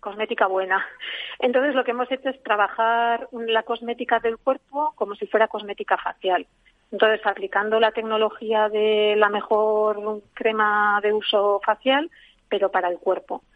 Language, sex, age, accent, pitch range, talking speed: Spanish, female, 40-59, Spanish, 200-230 Hz, 145 wpm